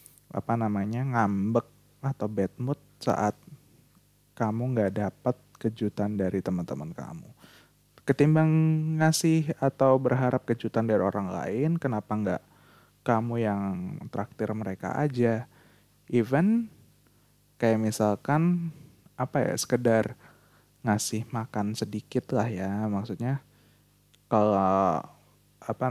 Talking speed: 100 wpm